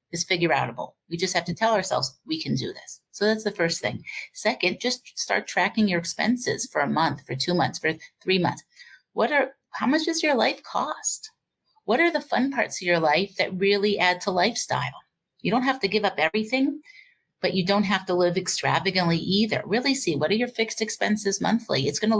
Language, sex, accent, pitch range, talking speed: English, female, American, 170-230 Hz, 215 wpm